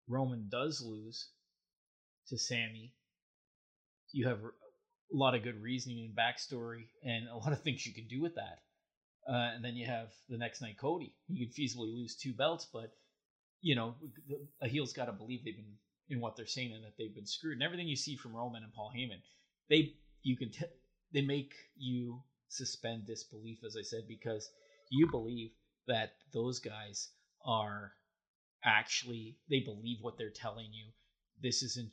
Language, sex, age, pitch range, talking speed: English, male, 30-49, 115-140 Hz, 180 wpm